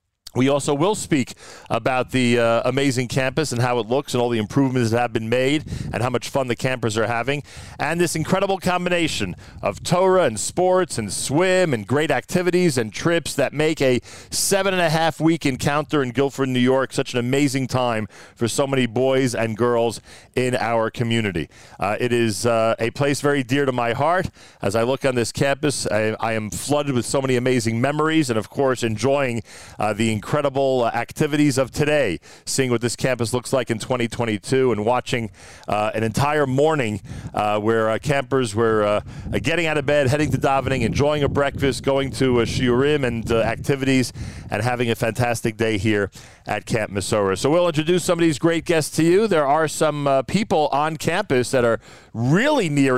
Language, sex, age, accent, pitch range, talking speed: English, male, 40-59, American, 115-145 Hz, 195 wpm